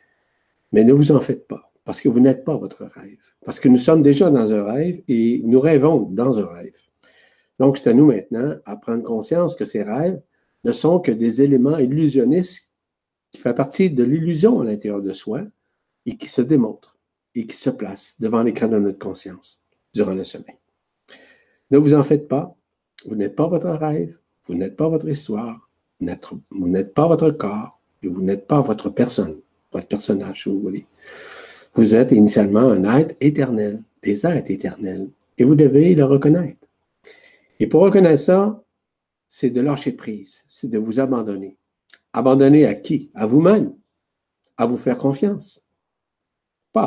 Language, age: French, 60-79